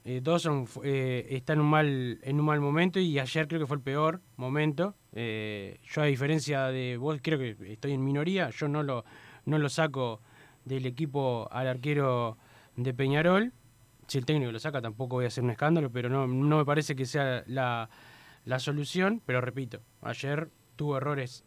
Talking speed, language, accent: 190 wpm, Spanish, Argentinian